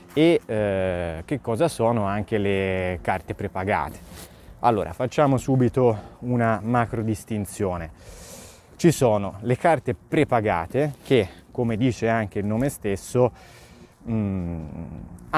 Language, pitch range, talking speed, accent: Italian, 100-125 Hz, 110 wpm, native